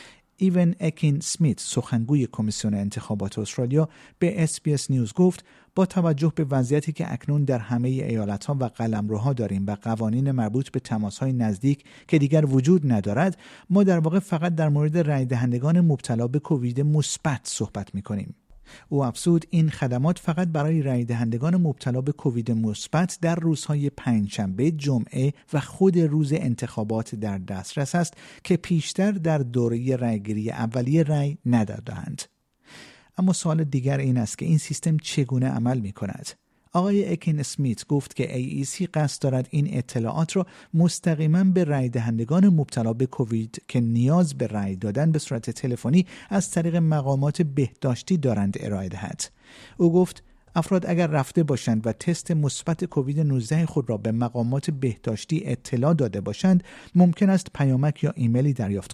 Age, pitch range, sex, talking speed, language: 50-69, 120-165 Hz, male, 155 wpm, Persian